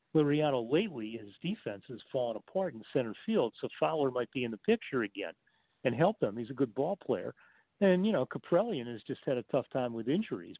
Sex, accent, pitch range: male, American, 120-165 Hz